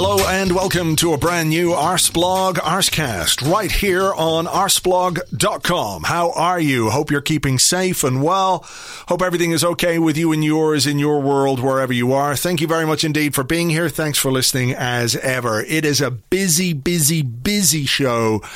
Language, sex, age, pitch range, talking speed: English, male, 40-59, 130-165 Hz, 180 wpm